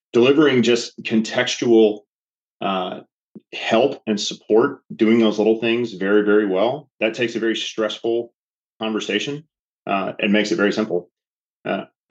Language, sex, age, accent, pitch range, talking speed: English, male, 30-49, American, 100-115 Hz, 135 wpm